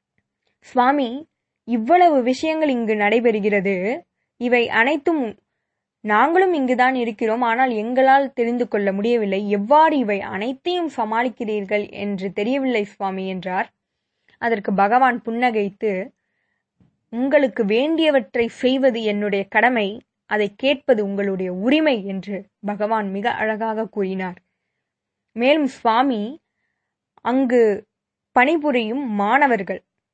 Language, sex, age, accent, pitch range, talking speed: Tamil, female, 20-39, native, 205-260 Hz, 90 wpm